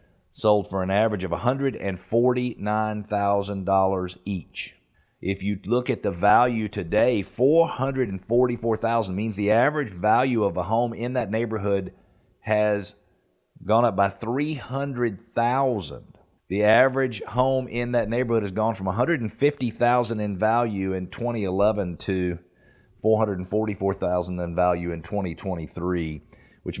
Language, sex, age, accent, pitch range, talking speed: English, male, 40-59, American, 95-120 Hz, 110 wpm